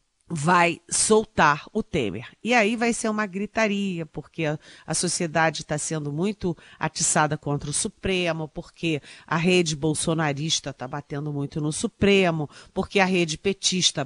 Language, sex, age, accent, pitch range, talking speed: Portuguese, female, 40-59, Brazilian, 155-210 Hz, 145 wpm